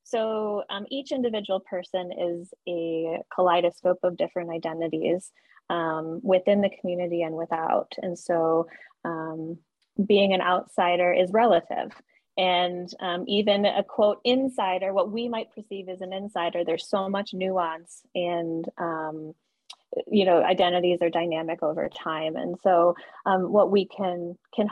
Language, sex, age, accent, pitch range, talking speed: English, female, 20-39, American, 170-210 Hz, 140 wpm